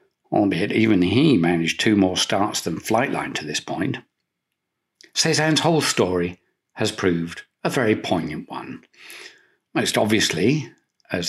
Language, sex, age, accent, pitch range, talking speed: English, male, 50-69, British, 85-130 Hz, 130 wpm